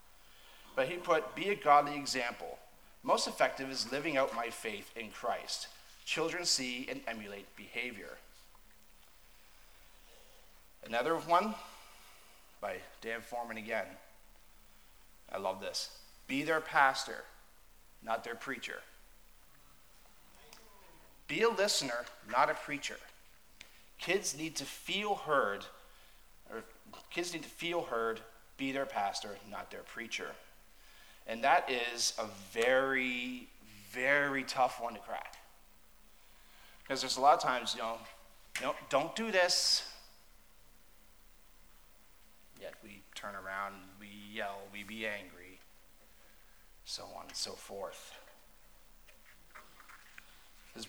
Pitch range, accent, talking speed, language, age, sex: 95-140 Hz, American, 110 wpm, English, 30-49, male